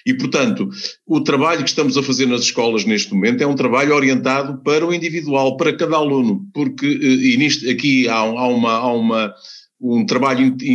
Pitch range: 130-170 Hz